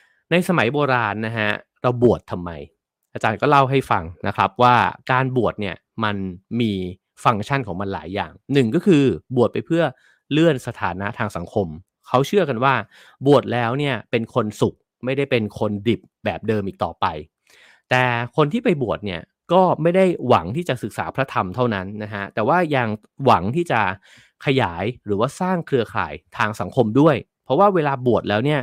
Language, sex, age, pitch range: English, male, 30-49, 105-140 Hz